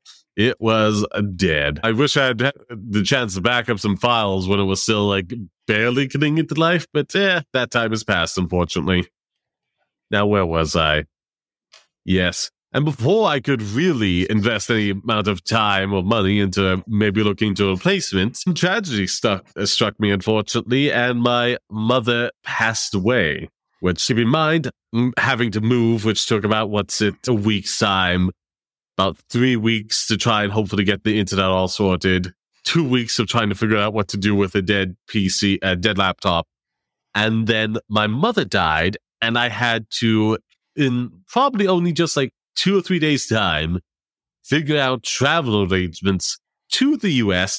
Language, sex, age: English, male, 30-49